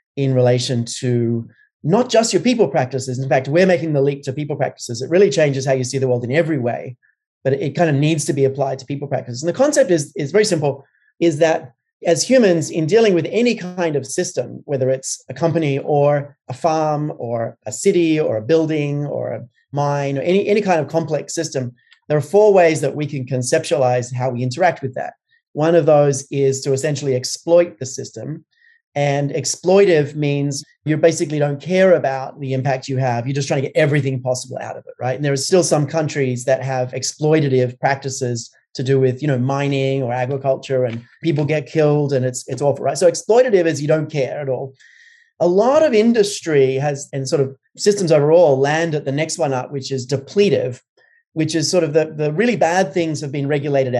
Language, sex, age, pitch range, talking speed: English, male, 30-49, 135-170 Hz, 210 wpm